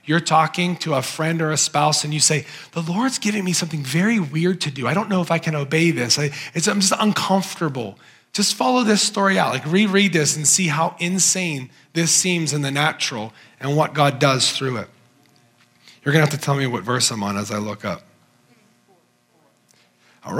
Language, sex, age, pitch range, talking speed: English, male, 40-59, 150-200 Hz, 210 wpm